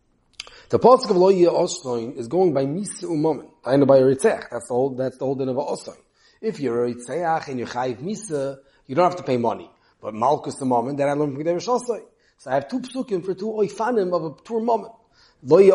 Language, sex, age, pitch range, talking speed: English, male, 30-49, 135-205 Hz, 210 wpm